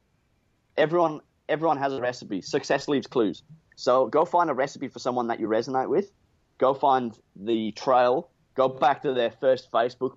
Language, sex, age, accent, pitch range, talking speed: English, male, 30-49, Australian, 115-150 Hz, 170 wpm